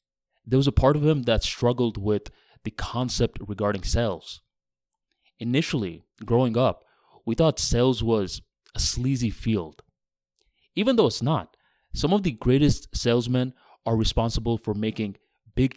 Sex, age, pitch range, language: male, 20-39, 100-130 Hz, English